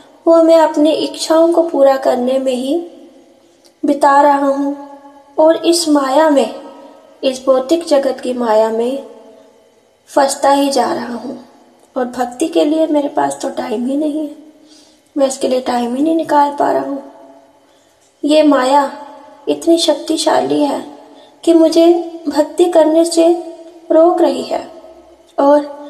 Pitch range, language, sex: 270-310 Hz, Hindi, female